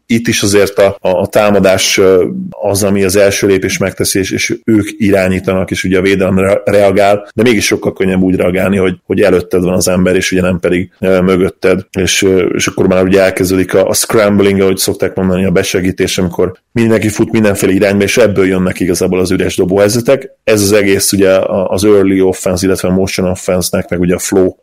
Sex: male